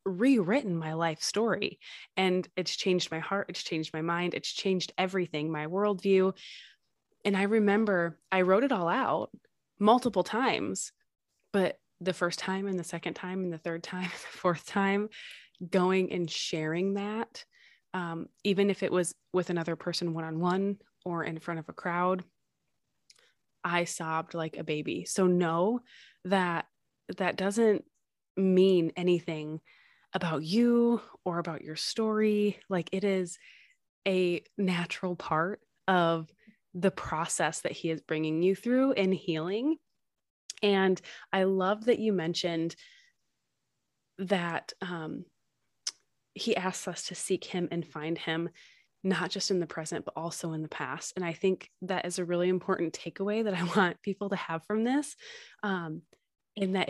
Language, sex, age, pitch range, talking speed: English, female, 20-39, 170-200 Hz, 155 wpm